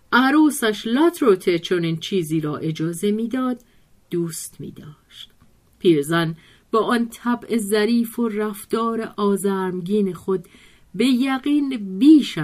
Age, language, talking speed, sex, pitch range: 50-69, Persian, 115 wpm, female, 160-225 Hz